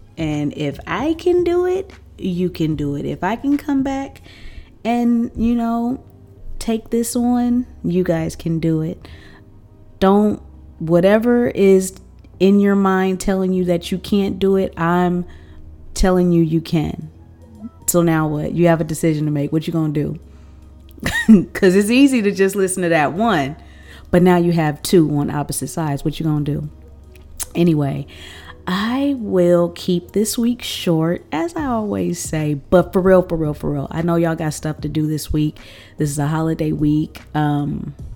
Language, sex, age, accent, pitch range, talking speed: English, female, 30-49, American, 145-185 Hz, 180 wpm